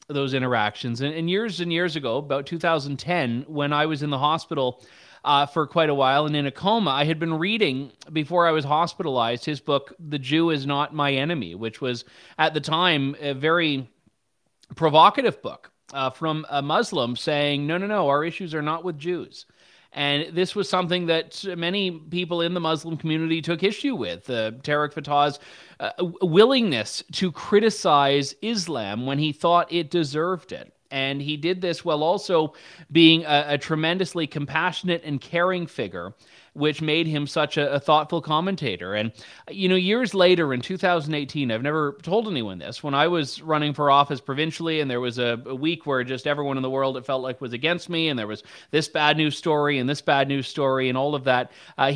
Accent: American